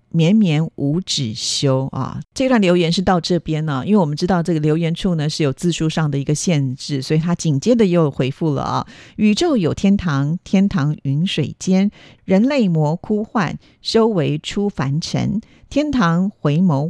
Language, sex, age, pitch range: Chinese, female, 50-69, 150-205 Hz